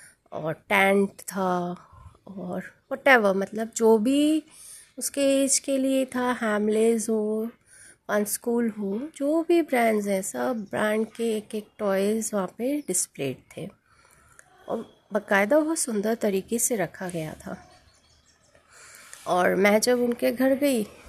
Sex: female